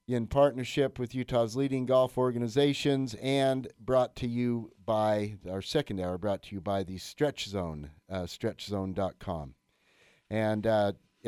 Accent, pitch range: American, 95-125 Hz